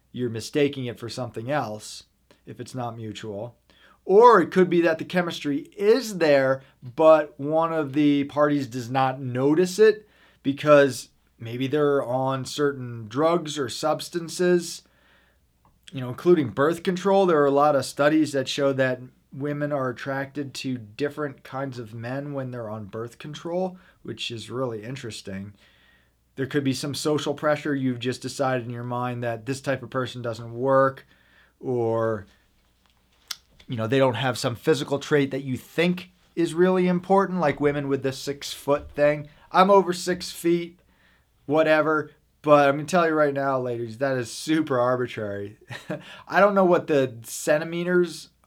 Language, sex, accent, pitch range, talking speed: English, male, American, 125-155 Hz, 160 wpm